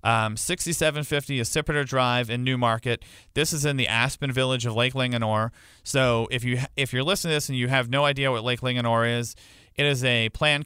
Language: English